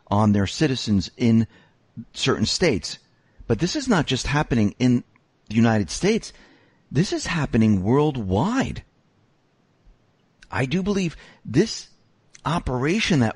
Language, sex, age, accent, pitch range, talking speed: English, male, 50-69, American, 90-140 Hz, 115 wpm